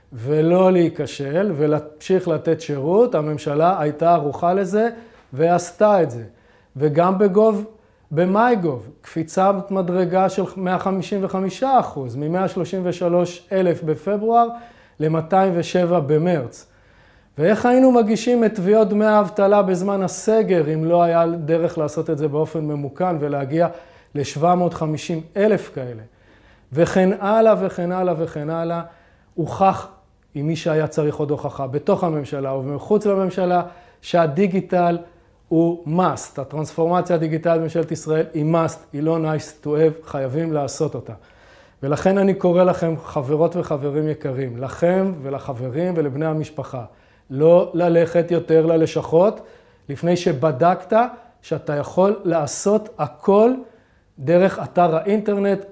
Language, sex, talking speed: Hebrew, male, 115 wpm